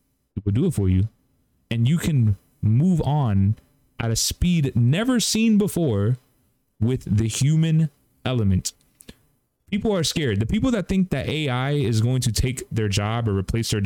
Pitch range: 105-135 Hz